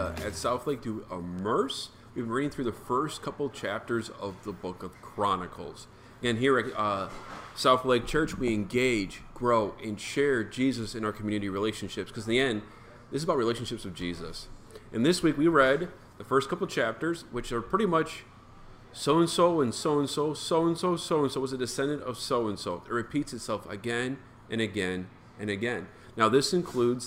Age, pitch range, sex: 40-59, 110-140 Hz, male